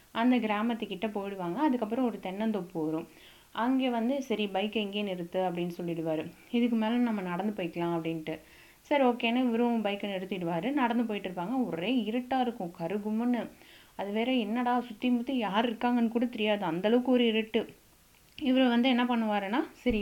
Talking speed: 145 wpm